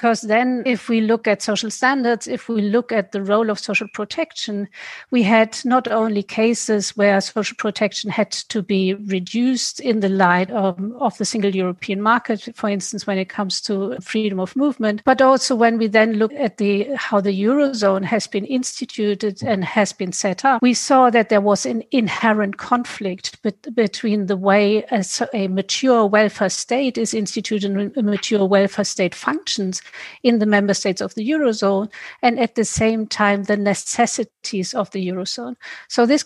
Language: English